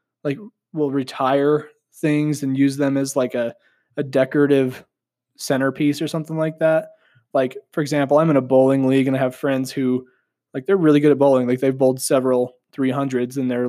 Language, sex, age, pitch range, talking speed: English, male, 20-39, 130-150 Hz, 190 wpm